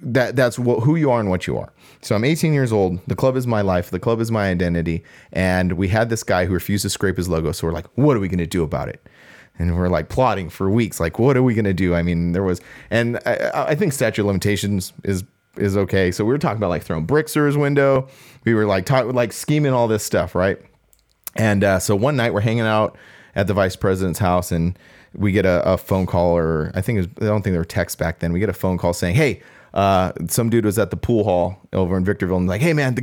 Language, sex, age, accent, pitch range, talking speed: English, male, 30-49, American, 95-120 Hz, 270 wpm